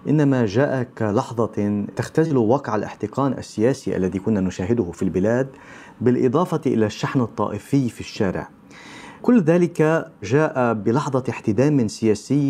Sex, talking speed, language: male, 115 wpm, Arabic